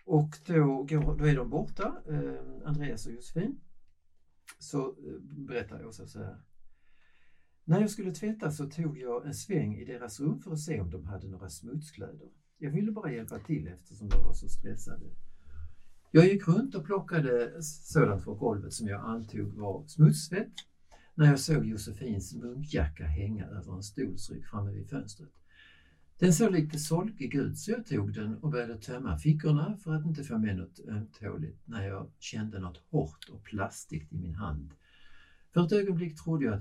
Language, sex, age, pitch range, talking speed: Swedish, male, 60-79, 95-150 Hz, 170 wpm